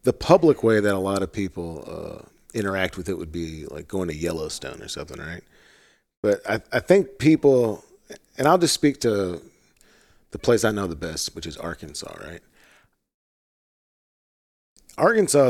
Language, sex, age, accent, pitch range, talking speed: English, male, 40-59, American, 85-120 Hz, 165 wpm